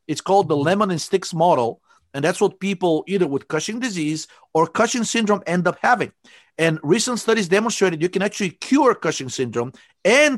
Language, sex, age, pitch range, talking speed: English, male, 50-69, 150-205 Hz, 185 wpm